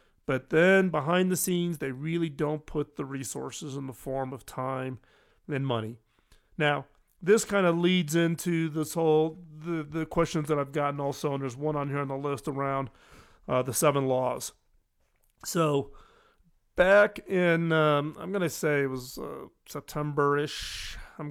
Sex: male